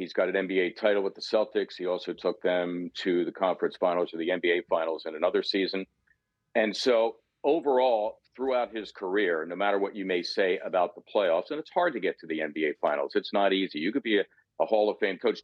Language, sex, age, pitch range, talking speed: English, male, 50-69, 95-115 Hz, 230 wpm